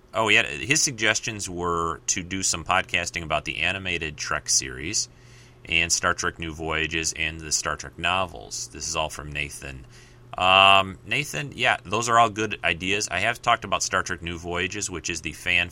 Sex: male